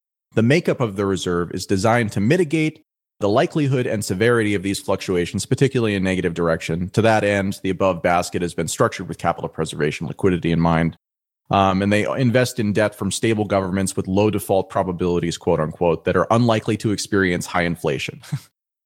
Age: 30-49